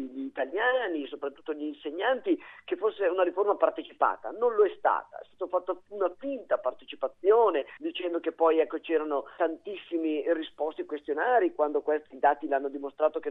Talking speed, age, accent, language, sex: 150 wpm, 40-59, native, Italian, male